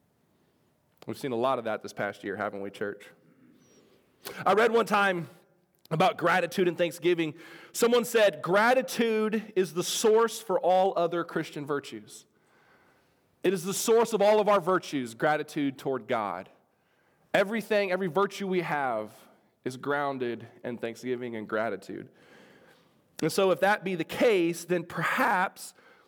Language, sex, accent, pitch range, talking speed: English, male, American, 130-185 Hz, 145 wpm